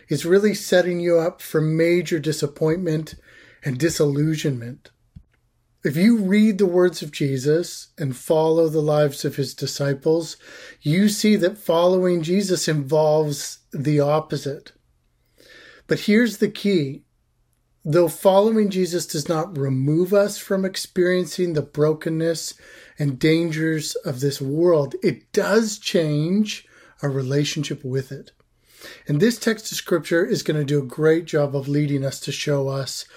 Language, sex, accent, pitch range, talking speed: English, male, American, 150-185 Hz, 140 wpm